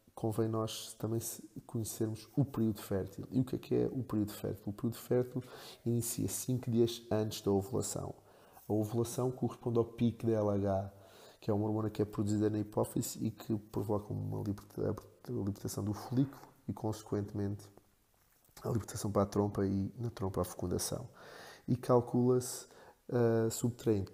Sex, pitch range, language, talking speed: male, 105-120 Hz, Portuguese, 160 wpm